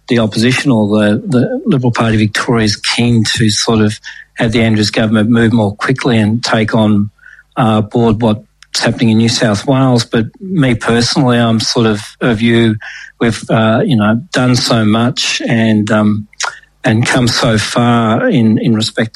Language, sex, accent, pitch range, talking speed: English, male, Australian, 110-125 Hz, 175 wpm